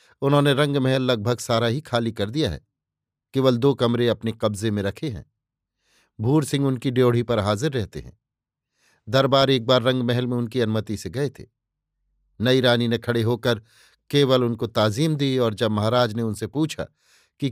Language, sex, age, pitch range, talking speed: Hindi, male, 50-69, 115-135 Hz, 180 wpm